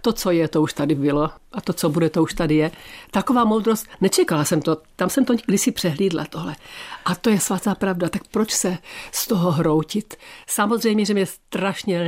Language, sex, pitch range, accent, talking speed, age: Czech, female, 160-205 Hz, native, 215 wpm, 50-69